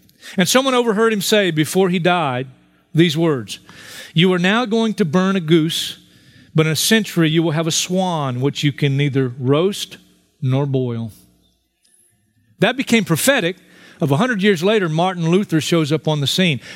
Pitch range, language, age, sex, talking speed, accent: 140-185 Hz, English, 40-59, male, 175 wpm, American